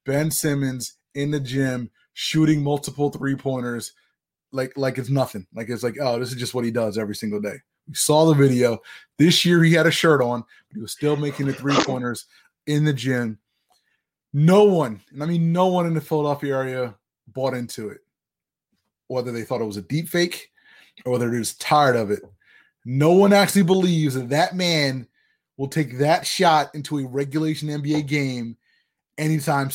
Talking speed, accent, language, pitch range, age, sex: 185 wpm, American, English, 130-175 Hz, 20-39, male